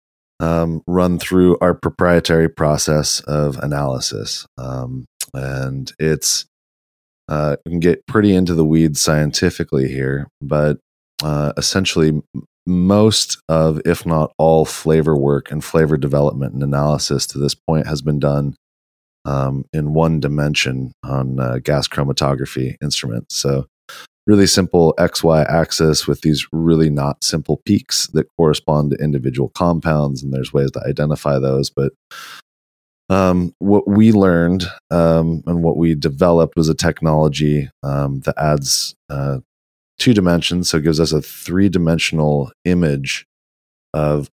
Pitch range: 70-80 Hz